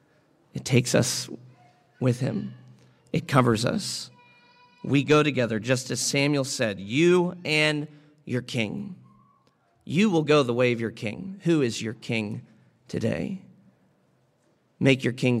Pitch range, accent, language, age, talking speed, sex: 120-150 Hz, American, English, 40-59, 135 wpm, male